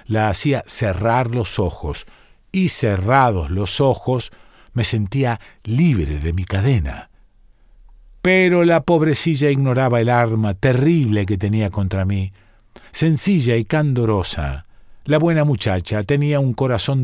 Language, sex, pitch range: Spanish, male, 105-145 Hz